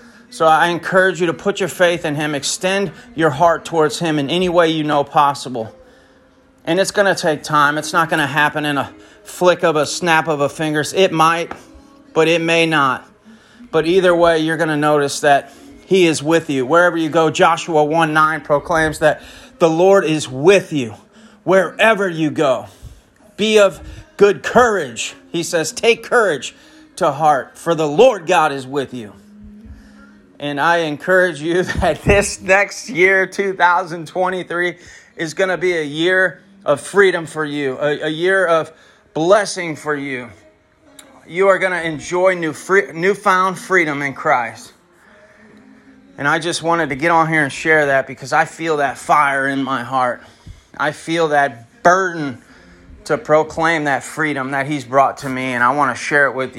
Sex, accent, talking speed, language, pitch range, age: male, American, 180 wpm, English, 145-185 Hz, 30-49